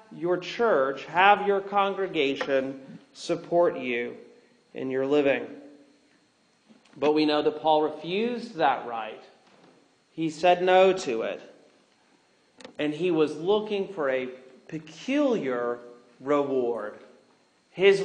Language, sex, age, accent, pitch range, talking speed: English, male, 40-59, American, 135-190 Hz, 105 wpm